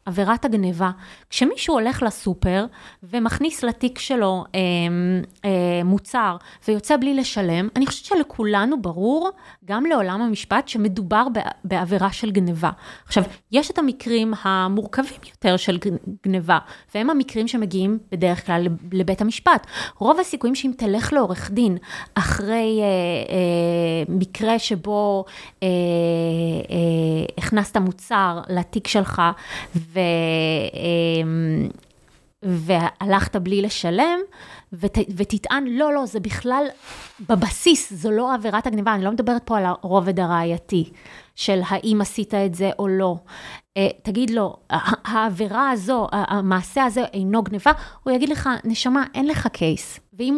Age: 20-39